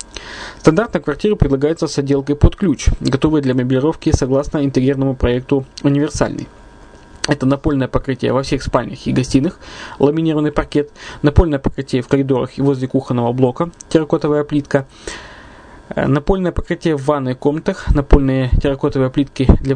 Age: 20-39